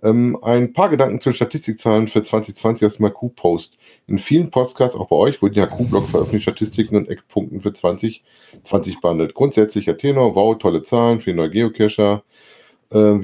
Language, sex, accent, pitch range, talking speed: German, male, German, 105-125 Hz, 175 wpm